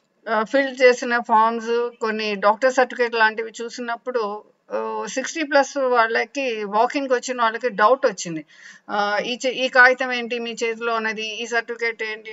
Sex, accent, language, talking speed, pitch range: female, native, Telugu, 125 wpm, 200-245 Hz